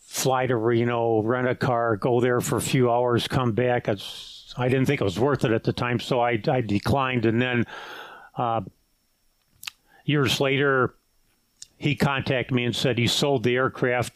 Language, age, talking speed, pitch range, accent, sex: English, 50-69, 180 wpm, 120-140 Hz, American, male